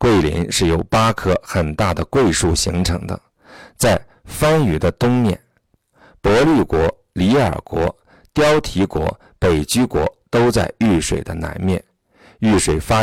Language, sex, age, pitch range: Chinese, male, 50-69, 85-110 Hz